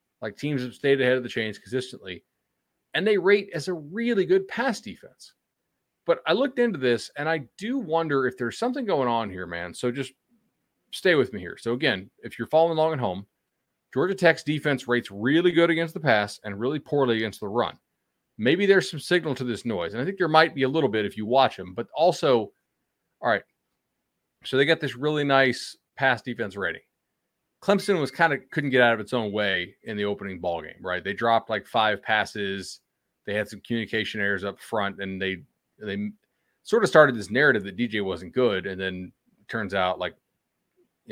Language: English